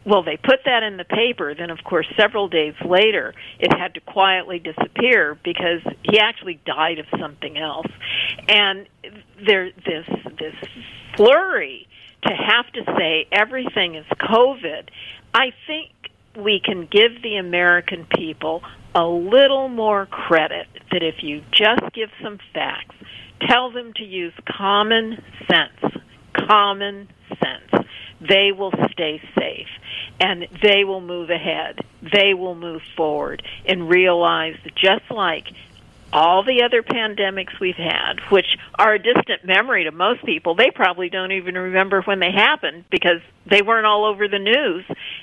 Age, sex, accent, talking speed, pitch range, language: 50-69, female, American, 145 wpm, 175-220 Hz, English